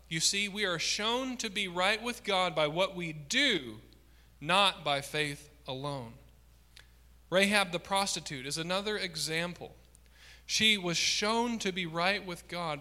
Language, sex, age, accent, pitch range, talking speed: English, male, 40-59, American, 115-170 Hz, 150 wpm